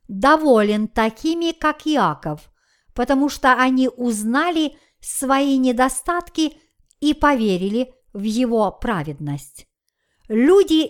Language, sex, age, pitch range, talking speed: Russian, male, 50-69, 225-295 Hz, 90 wpm